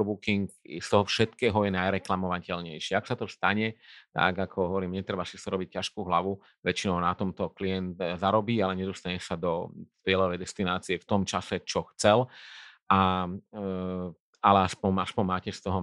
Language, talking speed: Slovak, 160 wpm